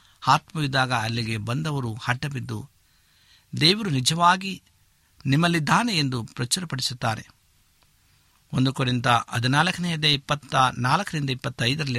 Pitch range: 115-140 Hz